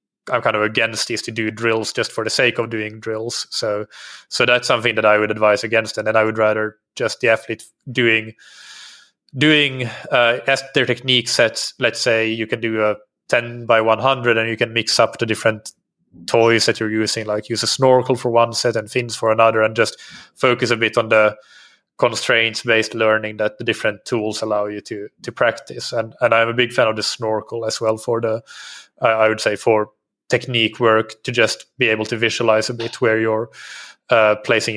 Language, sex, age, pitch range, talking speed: English, male, 20-39, 110-120 Hz, 210 wpm